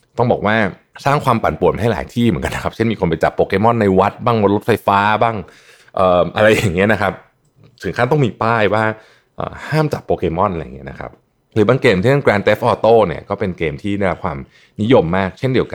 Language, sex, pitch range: Thai, male, 85-115 Hz